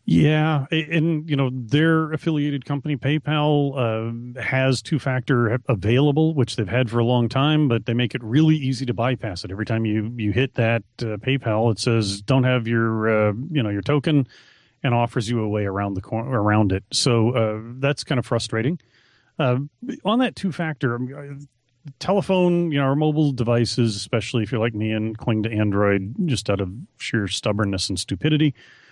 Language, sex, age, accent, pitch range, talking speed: English, male, 30-49, American, 110-140 Hz, 180 wpm